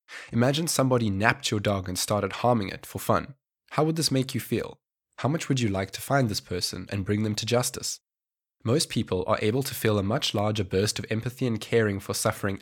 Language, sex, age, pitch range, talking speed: English, male, 20-39, 100-130 Hz, 225 wpm